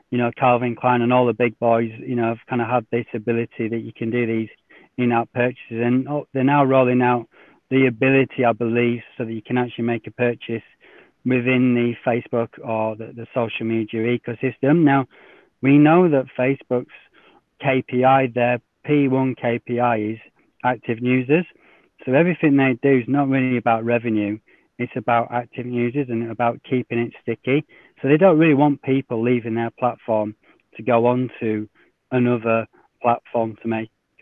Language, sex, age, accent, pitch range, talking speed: English, male, 30-49, British, 115-130 Hz, 170 wpm